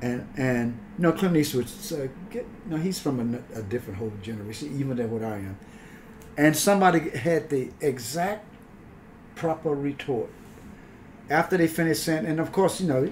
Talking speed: 170 wpm